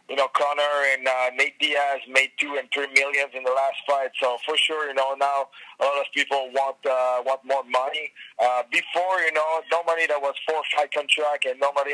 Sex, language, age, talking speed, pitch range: male, English, 20-39, 215 wpm, 120-145 Hz